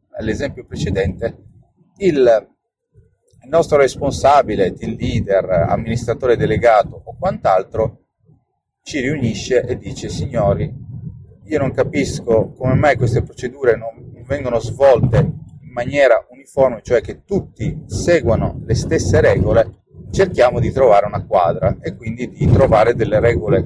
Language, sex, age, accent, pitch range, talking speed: Italian, male, 30-49, native, 115-140 Hz, 120 wpm